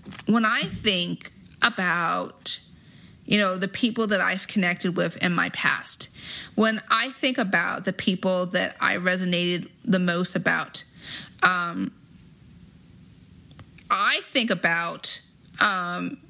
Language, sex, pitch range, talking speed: English, female, 185-235 Hz, 120 wpm